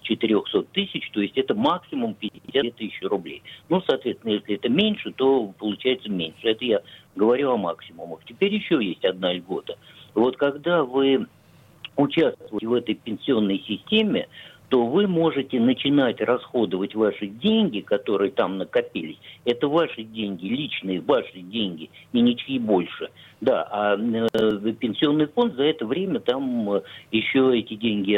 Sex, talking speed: male, 145 wpm